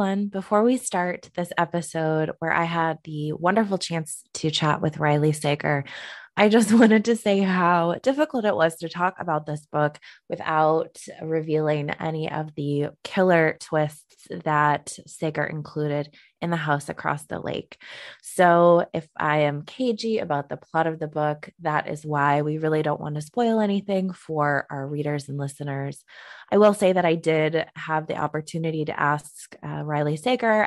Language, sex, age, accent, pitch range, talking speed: English, female, 20-39, American, 150-185 Hz, 170 wpm